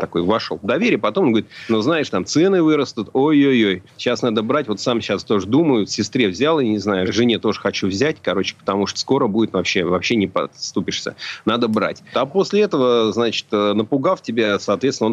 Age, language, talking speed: 30-49, Russian, 195 wpm